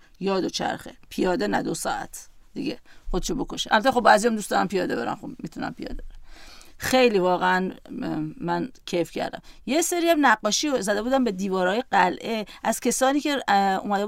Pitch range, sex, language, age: 195-265 Hz, female, Persian, 40-59